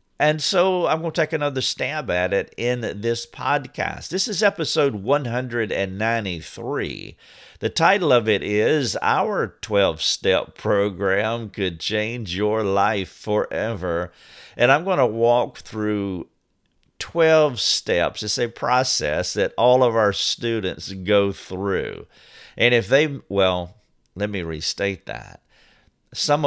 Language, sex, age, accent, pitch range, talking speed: English, male, 50-69, American, 95-120 Hz, 130 wpm